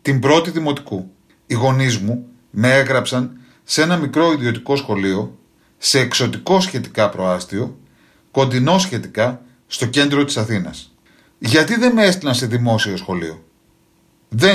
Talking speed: 130 wpm